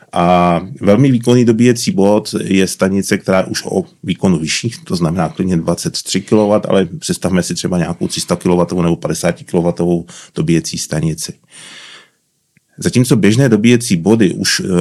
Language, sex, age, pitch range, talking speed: Czech, male, 30-49, 85-110 Hz, 140 wpm